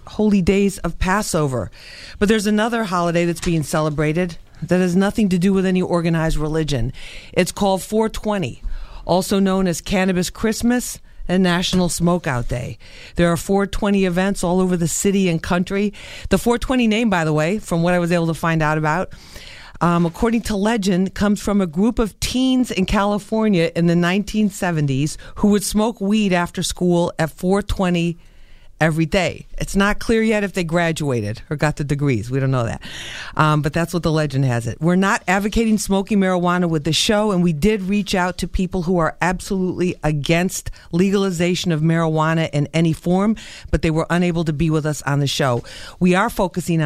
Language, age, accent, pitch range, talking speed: English, 50-69, American, 160-200 Hz, 185 wpm